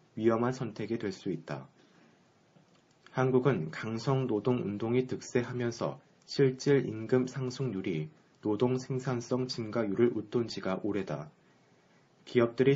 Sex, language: male, Korean